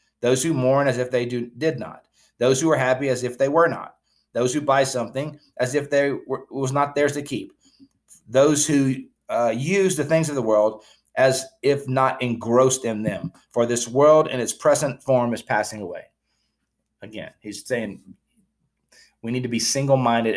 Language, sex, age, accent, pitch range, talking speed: English, male, 30-49, American, 110-135 Hz, 185 wpm